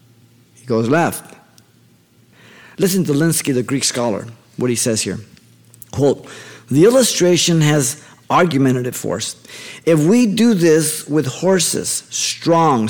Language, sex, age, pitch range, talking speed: English, male, 50-69, 120-160 Hz, 115 wpm